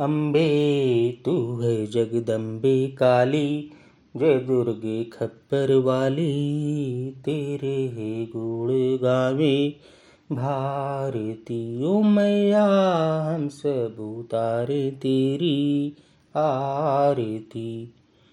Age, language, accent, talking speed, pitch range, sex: 30-49, Hindi, native, 65 wpm, 120-155 Hz, male